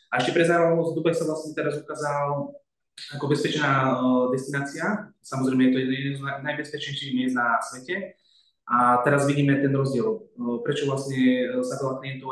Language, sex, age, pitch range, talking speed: Slovak, male, 20-39, 120-140 Hz, 155 wpm